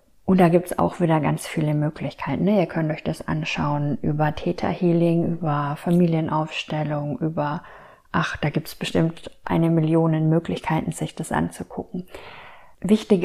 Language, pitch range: German, 175-205 Hz